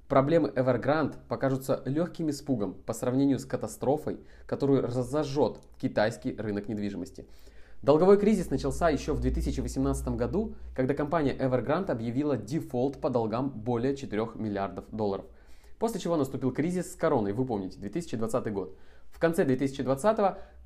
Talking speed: 135 wpm